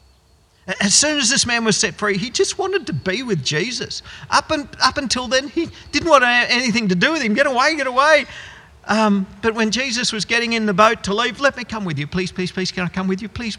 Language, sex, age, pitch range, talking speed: English, male, 50-69, 155-230 Hz, 260 wpm